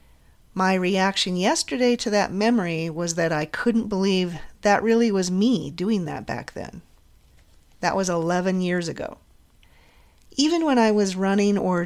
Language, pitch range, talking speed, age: English, 160-210 Hz, 150 wpm, 40-59